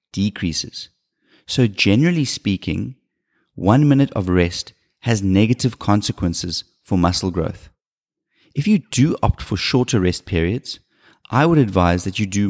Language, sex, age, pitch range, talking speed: English, male, 30-49, 95-120 Hz, 135 wpm